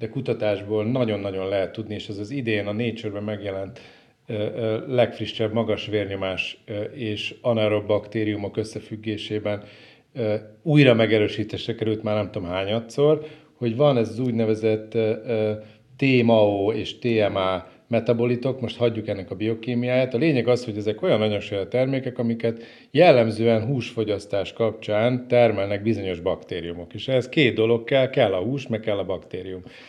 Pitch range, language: 105-125 Hz, Hungarian